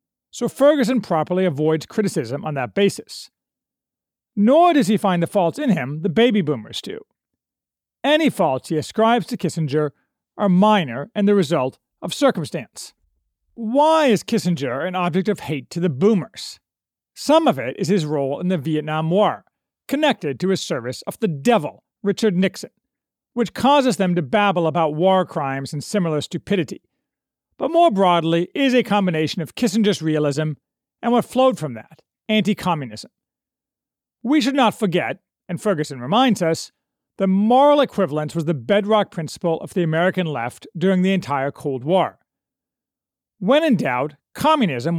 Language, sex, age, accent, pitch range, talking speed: English, male, 40-59, American, 155-220 Hz, 155 wpm